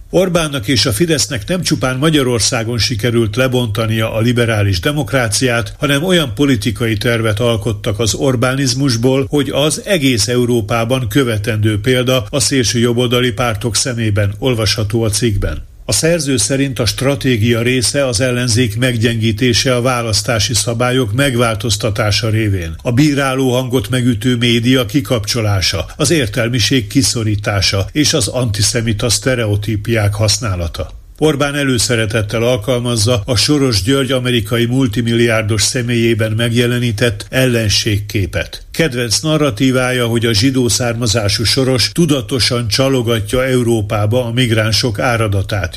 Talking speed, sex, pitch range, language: 110 wpm, male, 110-135 Hz, Hungarian